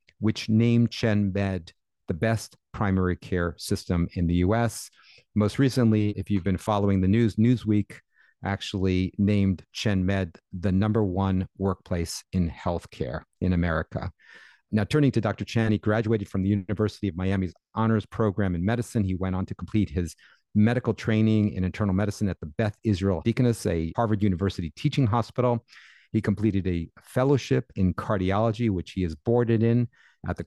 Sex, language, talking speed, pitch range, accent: male, English, 160 wpm, 95-110 Hz, American